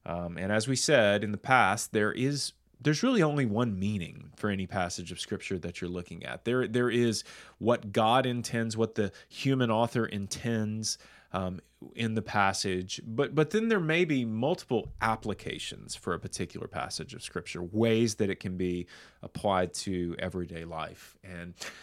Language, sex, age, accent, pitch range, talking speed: English, male, 30-49, American, 100-125 Hz, 175 wpm